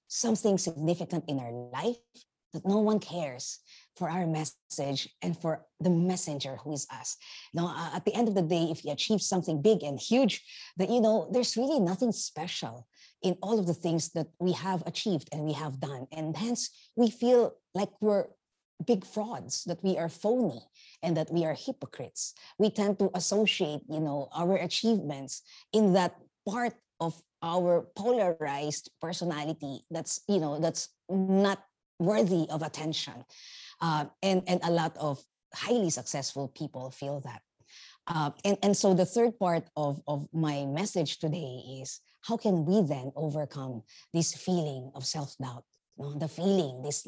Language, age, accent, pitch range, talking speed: English, 50-69, Filipino, 150-195 Hz, 165 wpm